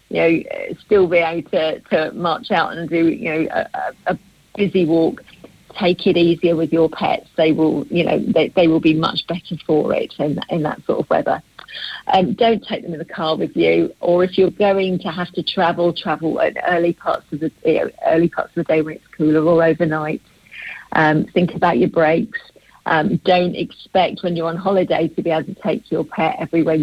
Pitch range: 160-195 Hz